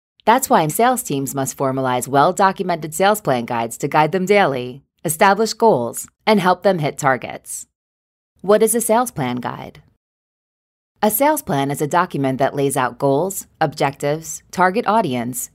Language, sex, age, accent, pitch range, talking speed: English, female, 20-39, American, 135-205 Hz, 155 wpm